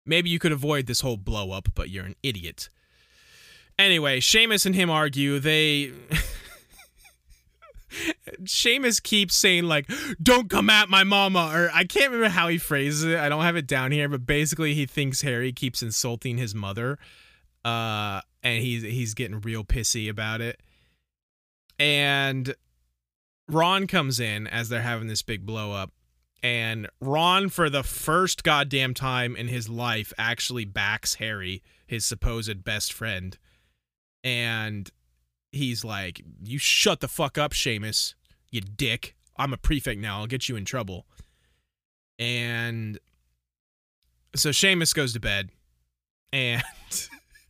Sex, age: male, 20-39